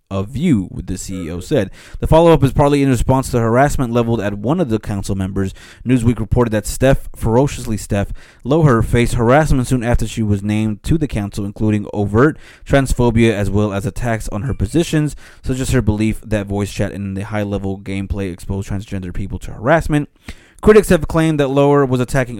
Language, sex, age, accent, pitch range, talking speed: English, male, 20-39, American, 100-125 Hz, 190 wpm